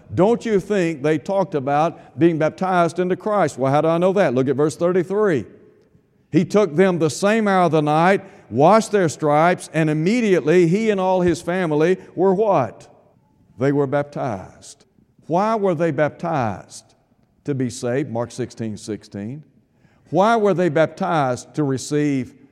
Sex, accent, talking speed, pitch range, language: male, American, 165 wpm, 140-180 Hz, English